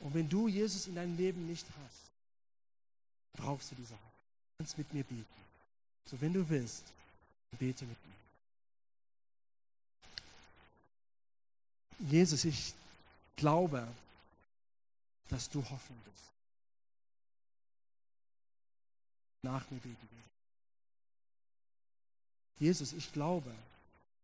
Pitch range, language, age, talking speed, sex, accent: 100-125 Hz, German, 50-69, 95 wpm, male, German